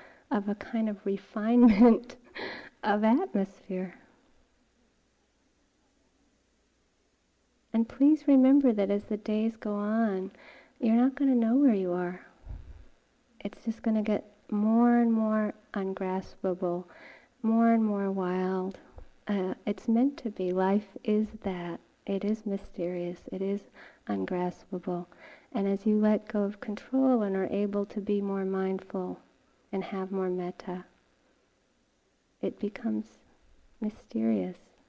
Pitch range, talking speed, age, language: 190-230 Hz, 125 wpm, 50-69, English